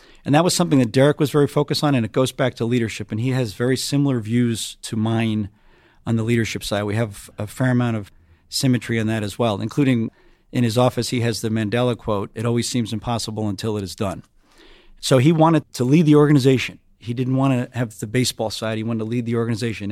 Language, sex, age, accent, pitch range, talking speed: English, male, 40-59, American, 115-130 Hz, 230 wpm